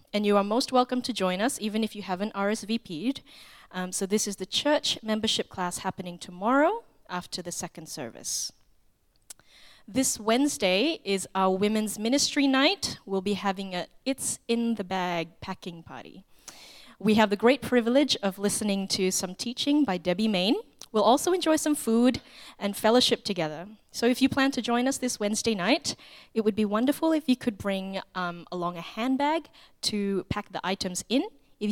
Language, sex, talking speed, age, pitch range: English, female, 175 wpm, 20-39, 190-255 Hz